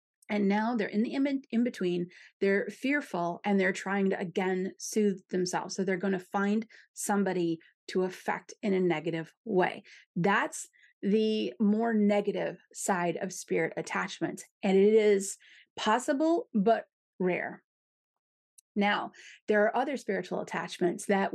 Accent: American